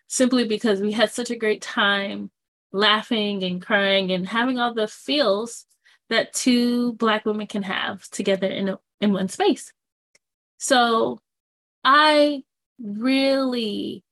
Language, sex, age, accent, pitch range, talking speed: English, female, 20-39, American, 200-230 Hz, 130 wpm